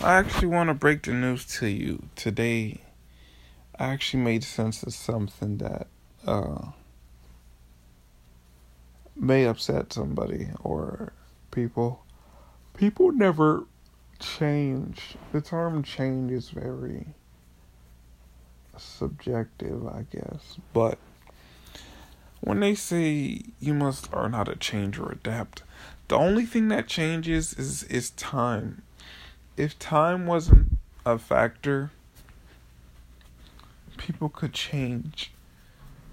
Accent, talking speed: American, 105 wpm